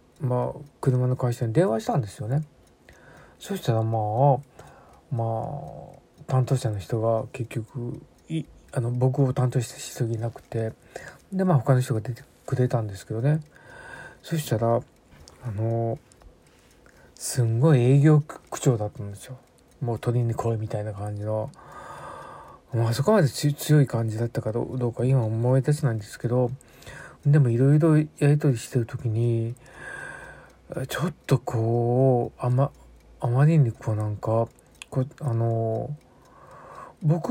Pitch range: 115-145 Hz